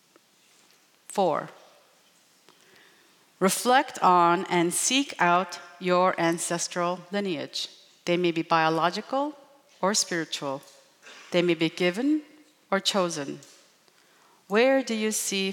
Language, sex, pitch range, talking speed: English, female, 170-200 Hz, 95 wpm